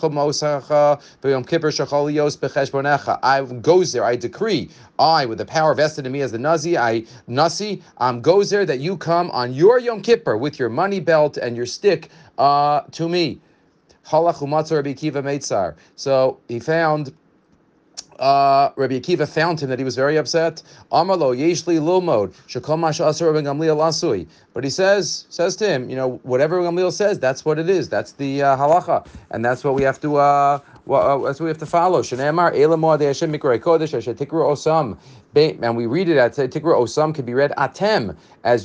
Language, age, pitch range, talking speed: English, 40-59, 140-180 Hz, 150 wpm